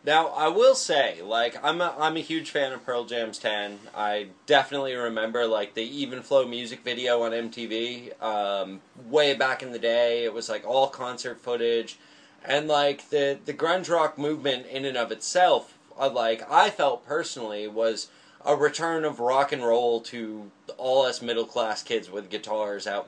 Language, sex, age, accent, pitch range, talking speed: English, male, 20-39, American, 115-150 Hz, 180 wpm